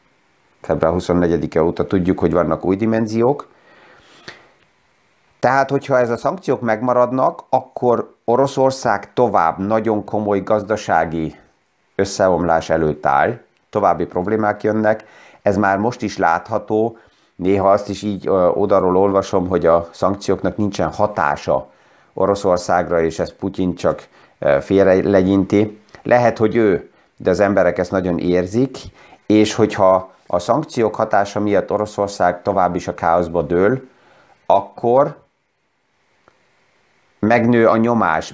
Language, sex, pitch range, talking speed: Hungarian, male, 90-110 Hz, 115 wpm